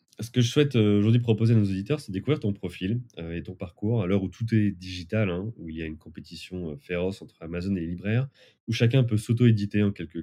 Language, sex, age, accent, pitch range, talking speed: French, male, 30-49, French, 85-110 Hz, 240 wpm